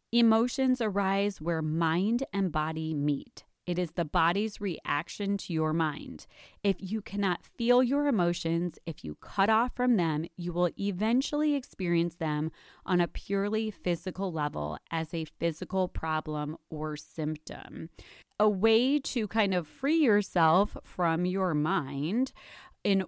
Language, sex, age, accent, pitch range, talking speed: English, female, 30-49, American, 170-210 Hz, 140 wpm